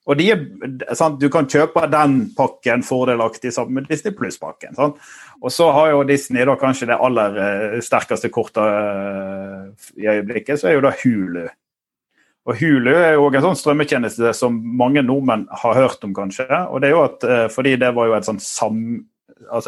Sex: male